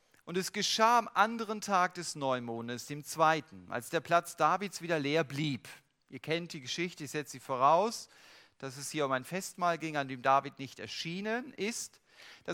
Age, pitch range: 40-59, 140-200 Hz